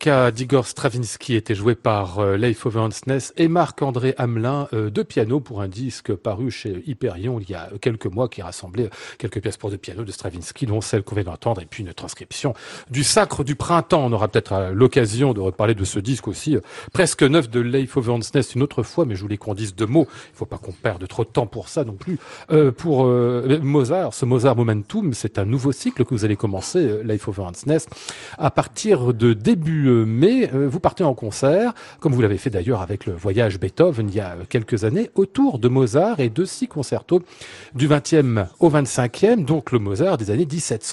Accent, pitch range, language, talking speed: French, 110-145 Hz, French, 210 wpm